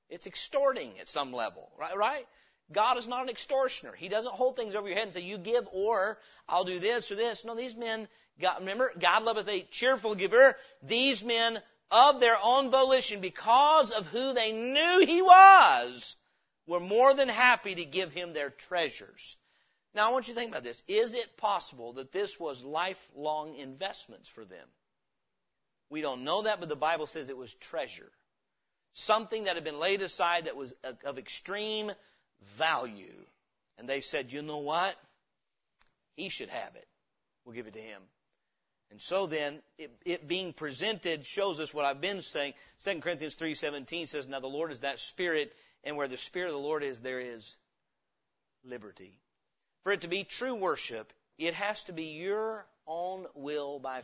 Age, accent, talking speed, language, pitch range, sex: 40-59, American, 180 wpm, English, 145-225 Hz, male